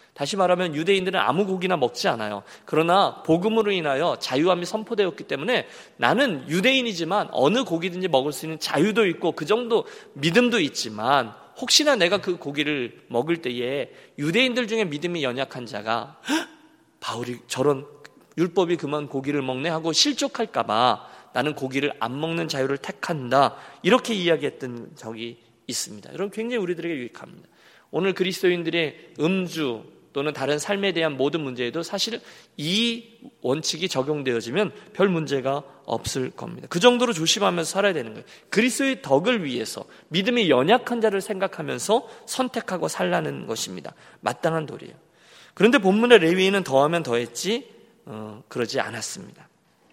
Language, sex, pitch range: Korean, male, 135-205 Hz